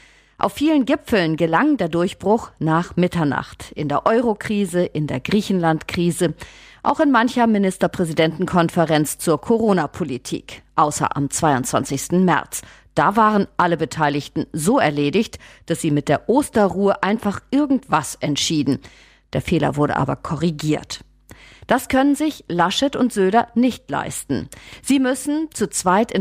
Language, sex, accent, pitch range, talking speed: German, female, German, 160-220 Hz, 130 wpm